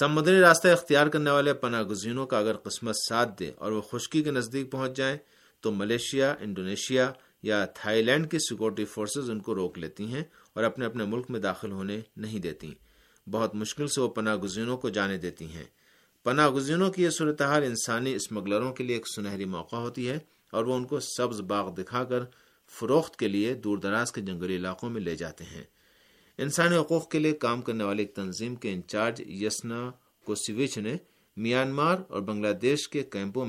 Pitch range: 105-140 Hz